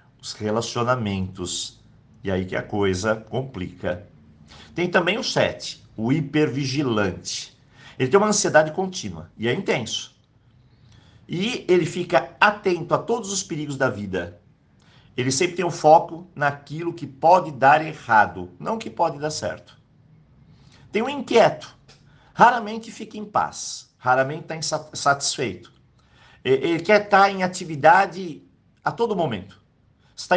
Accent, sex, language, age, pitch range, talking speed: Brazilian, male, Portuguese, 50-69, 120-165 Hz, 130 wpm